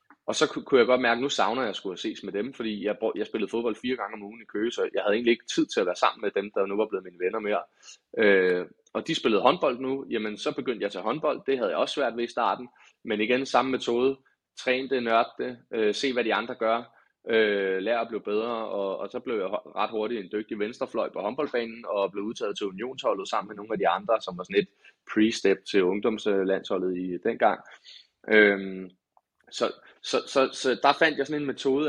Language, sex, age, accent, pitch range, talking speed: Danish, male, 20-39, native, 105-130 Hz, 235 wpm